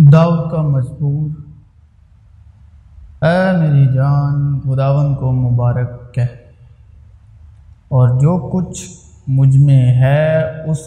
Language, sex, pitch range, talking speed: Urdu, male, 120-155 Hz, 95 wpm